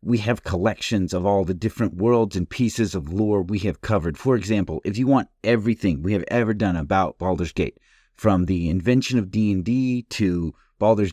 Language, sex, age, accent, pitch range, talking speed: English, male, 30-49, American, 95-125 Hz, 195 wpm